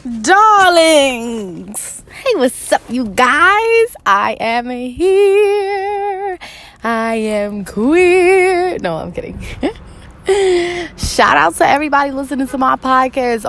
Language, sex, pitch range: English, female, 170-240 Hz